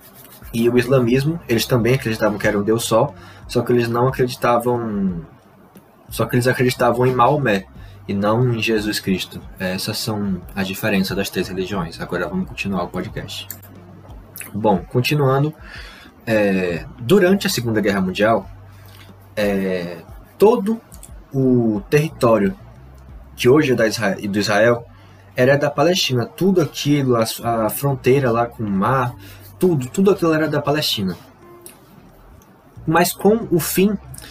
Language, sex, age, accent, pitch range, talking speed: Portuguese, male, 20-39, Brazilian, 100-140 Hz, 135 wpm